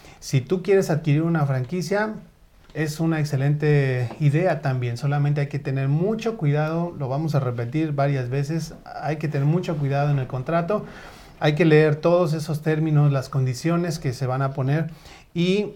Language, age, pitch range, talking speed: Spanish, 30-49, 135-165 Hz, 170 wpm